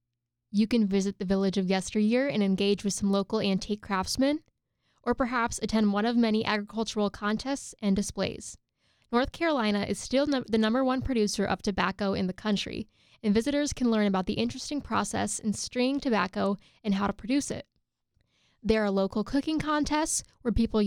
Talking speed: 175 wpm